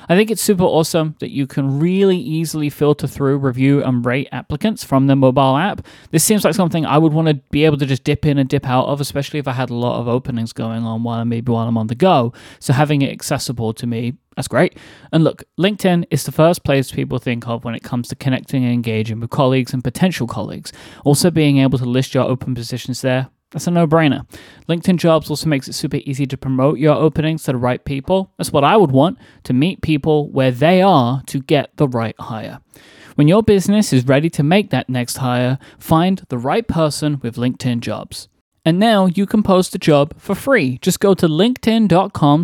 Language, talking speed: English, 225 wpm